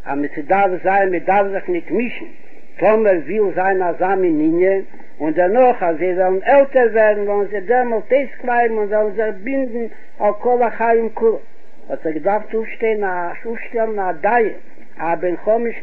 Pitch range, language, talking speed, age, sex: 195-245 Hz, Hebrew, 130 wpm, 60-79, male